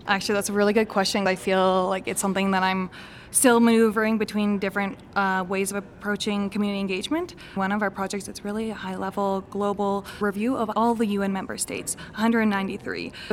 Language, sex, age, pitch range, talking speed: English, female, 20-39, 195-220 Hz, 180 wpm